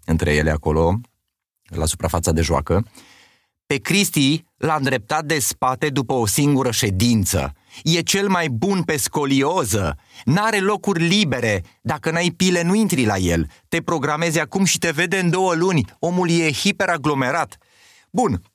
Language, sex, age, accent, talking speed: Romanian, male, 30-49, native, 150 wpm